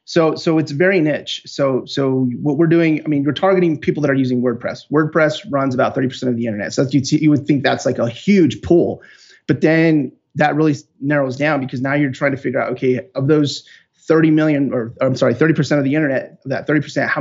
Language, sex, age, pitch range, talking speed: English, male, 30-49, 125-145 Hz, 235 wpm